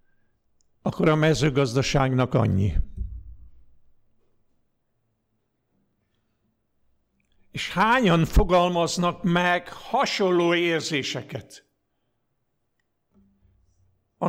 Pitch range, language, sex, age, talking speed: 140-190 Hz, Hungarian, male, 60-79, 45 wpm